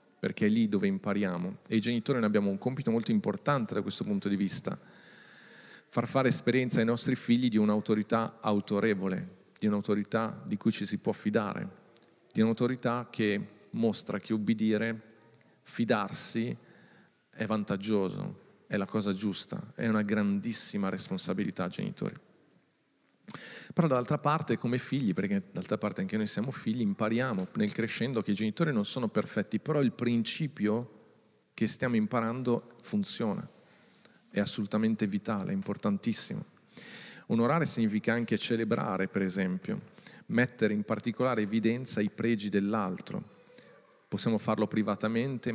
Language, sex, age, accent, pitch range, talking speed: Italian, male, 40-59, native, 105-125 Hz, 135 wpm